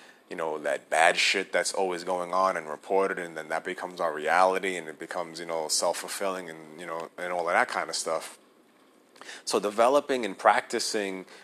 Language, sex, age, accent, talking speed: English, male, 30-49, American, 195 wpm